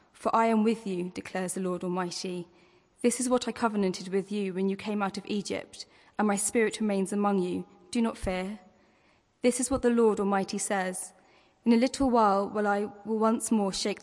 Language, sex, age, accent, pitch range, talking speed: English, female, 10-29, British, 190-220 Hz, 205 wpm